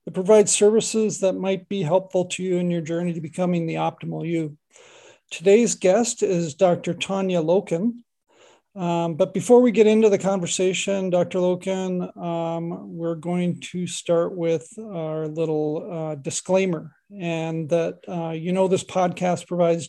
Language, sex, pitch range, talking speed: English, male, 165-190 Hz, 155 wpm